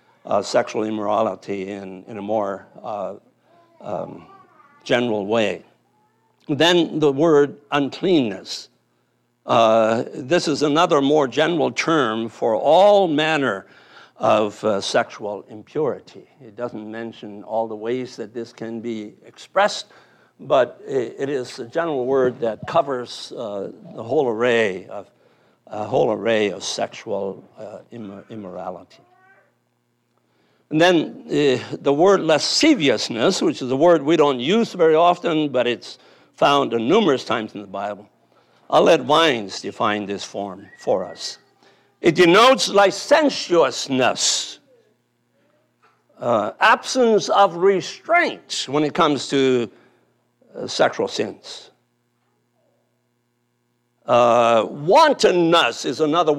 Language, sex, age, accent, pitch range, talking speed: English, male, 60-79, American, 110-165 Hz, 120 wpm